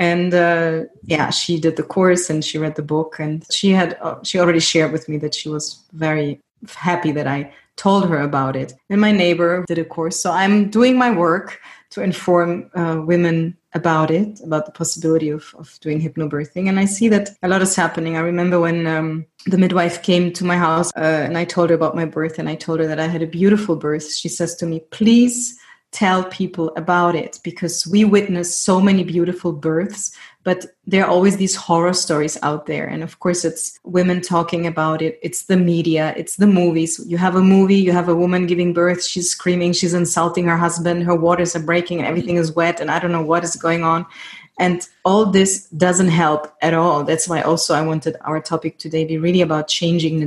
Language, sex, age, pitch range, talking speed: English, female, 20-39, 160-180 Hz, 220 wpm